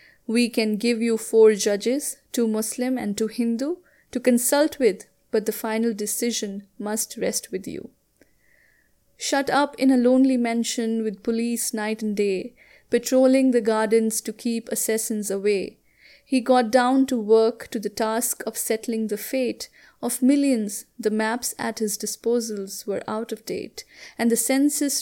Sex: female